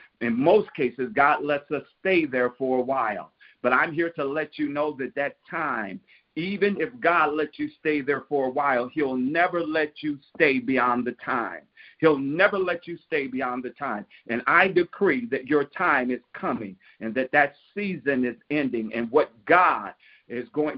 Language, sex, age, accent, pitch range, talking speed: English, male, 50-69, American, 140-175 Hz, 190 wpm